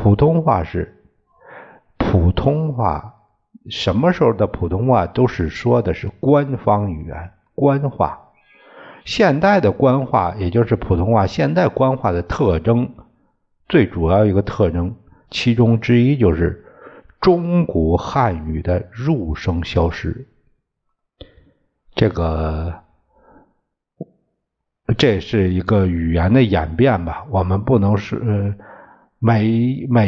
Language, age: Chinese, 60-79